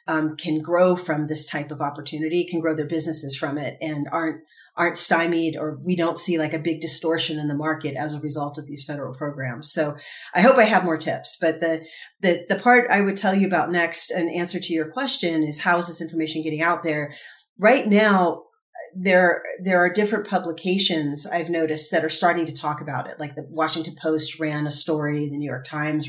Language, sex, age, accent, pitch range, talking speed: English, female, 40-59, American, 155-180 Hz, 215 wpm